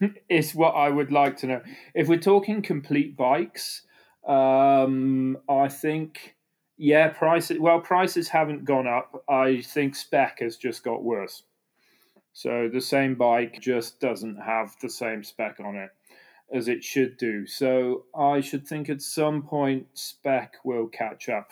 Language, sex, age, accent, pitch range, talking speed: English, male, 30-49, British, 120-150 Hz, 155 wpm